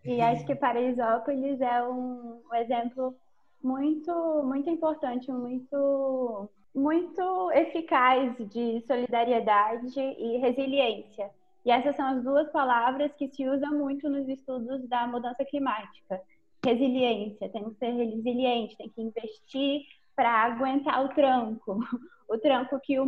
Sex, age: female, 20-39